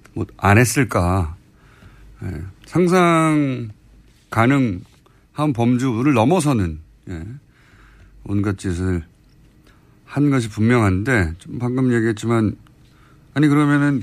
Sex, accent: male, native